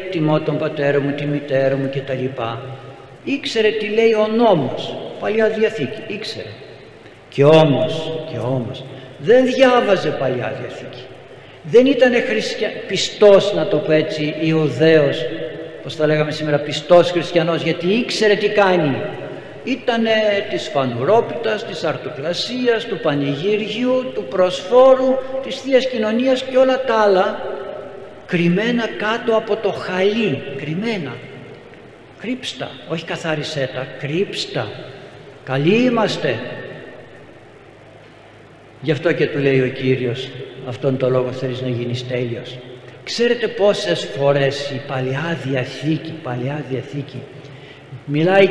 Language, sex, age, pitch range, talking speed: Greek, male, 60-79, 135-220 Hz, 115 wpm